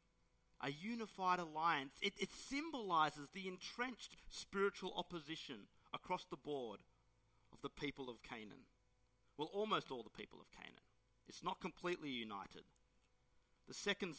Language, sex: English, male